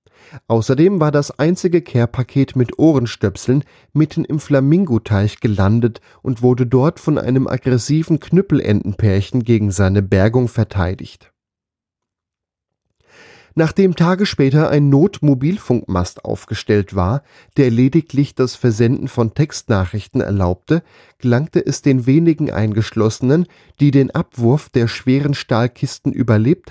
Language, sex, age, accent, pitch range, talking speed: German, male, 10-29, German, 115-145 Hz, 110 wpm